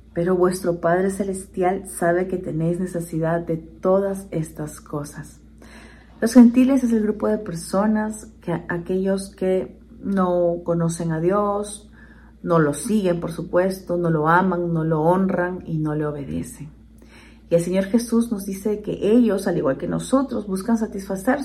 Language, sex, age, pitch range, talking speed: Spanish, female, 40-59, 165-200 Hz, 155 wpm